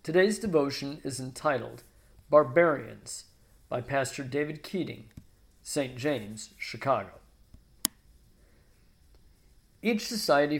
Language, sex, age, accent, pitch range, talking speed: English, male, 50-69, American, 130-185 Hz, 80 wpm